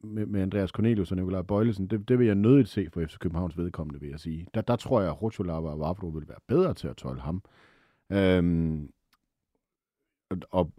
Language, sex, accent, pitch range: Danish, male, native, 80-110 Hz